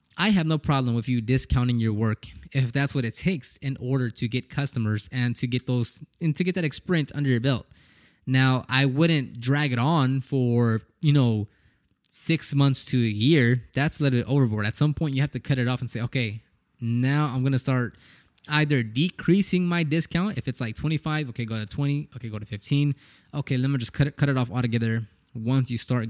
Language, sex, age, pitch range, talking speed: English, male, 20-39, 120-145 Hz, 220 wpm